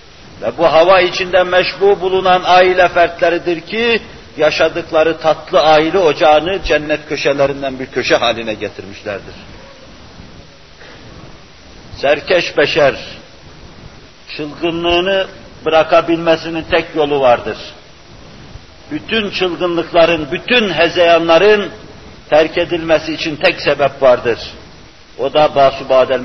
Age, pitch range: 50-69, 150-190 Hz